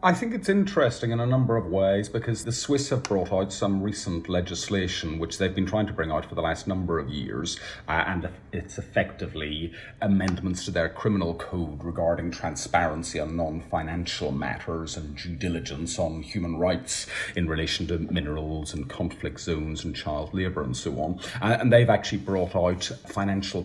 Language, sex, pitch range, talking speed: English, male, 85-105 Hz, 180 wpm